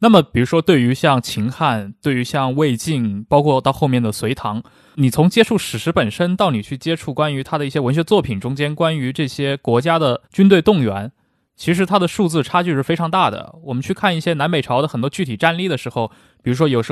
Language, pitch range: Chinese, 125-165 Hz